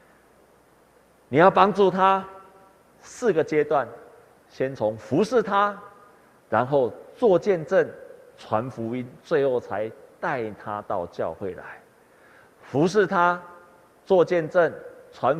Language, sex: Chinese, male